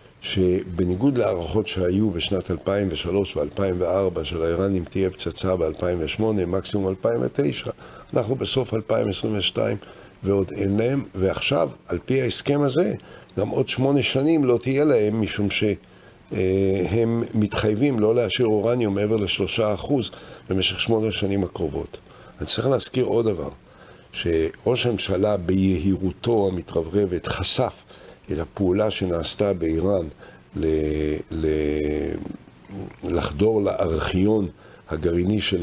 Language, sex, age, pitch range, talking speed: Hebrew, male, 60-79, 90-110 Hz, 105 wpm